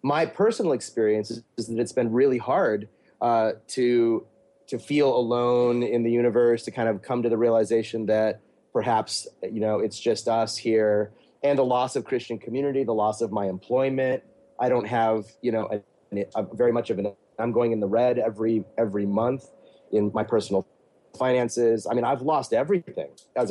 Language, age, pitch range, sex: English, 30-49, 115-135 Hz, male